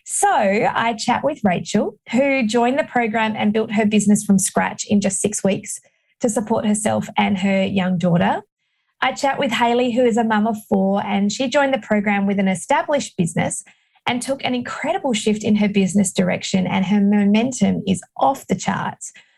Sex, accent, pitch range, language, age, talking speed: female, Australian, 200-260 Hz, English, 20-39, 190 wpm